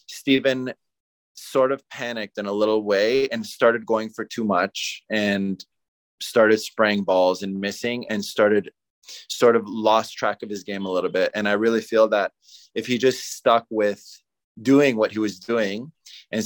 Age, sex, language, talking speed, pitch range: 20-39, male, English, 175 wpm, 100-115 Hz